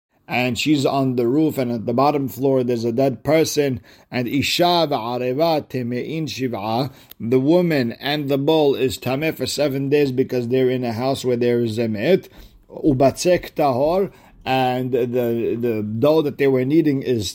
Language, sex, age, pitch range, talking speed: English, male, 50-69, 120-145 Hz, 150 wpm